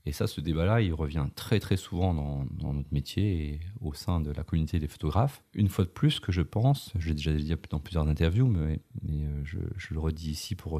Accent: French